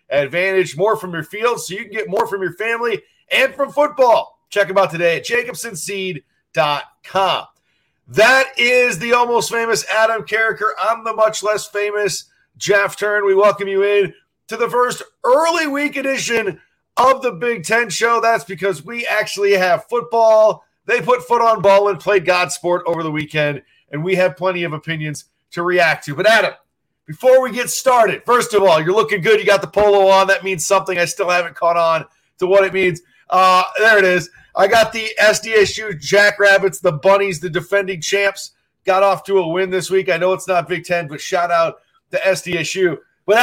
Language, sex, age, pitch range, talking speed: English, male, 40-59, 185-225 Hz, 195 wpm